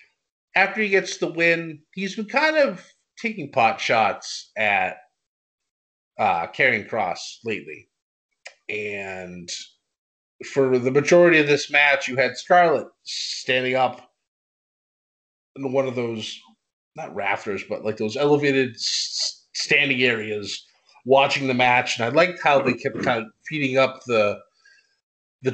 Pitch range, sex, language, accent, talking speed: 130-175 Hz, male, English, American, 135 wpm